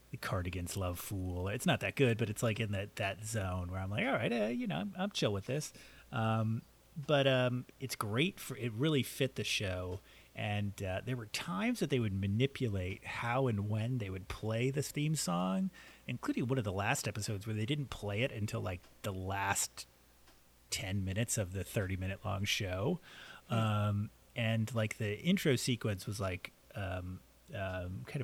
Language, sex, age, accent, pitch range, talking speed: English, male, 30-49, American, 95-125 Hz, 190 wpm